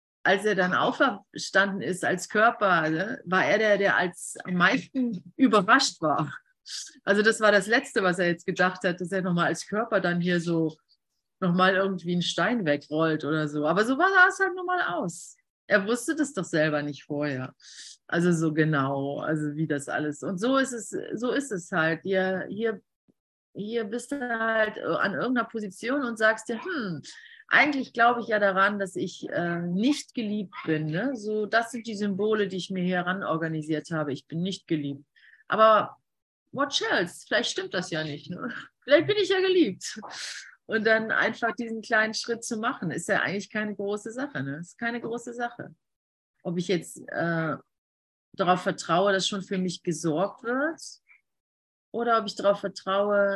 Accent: German